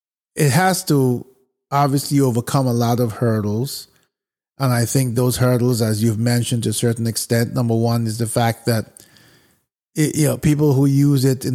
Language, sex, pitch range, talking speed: English, male, 120-140 Hz, 180 wpm